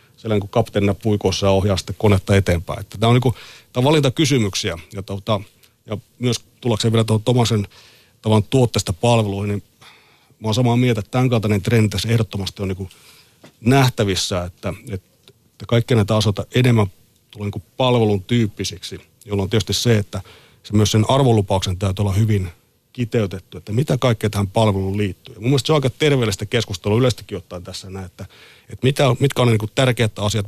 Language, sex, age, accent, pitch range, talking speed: Finnish, male, 40-59, native, 100-120 Hz, 160 wpm